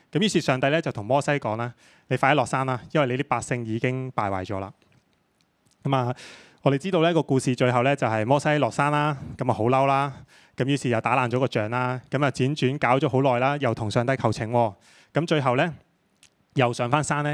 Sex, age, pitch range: male, 20-39, 120-160 Hz